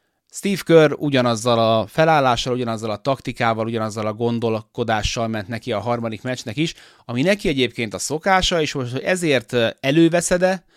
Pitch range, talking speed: 110-140 Hz, 145 wpm